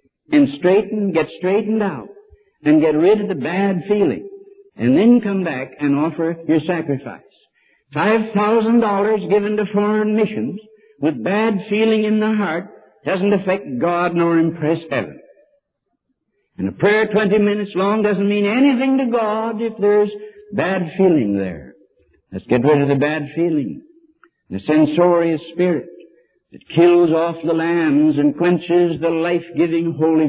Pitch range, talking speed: 155-210 Hz, 150 wpm